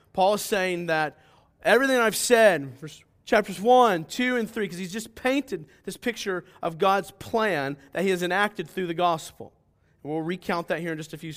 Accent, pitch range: American, 135-210 Hz